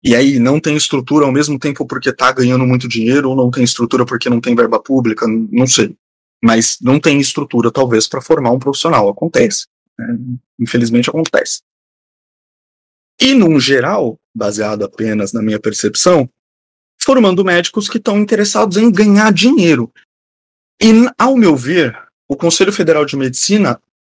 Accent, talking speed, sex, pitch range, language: Brazilian, 155 wpm, male, 125-175 Hz, Portuguese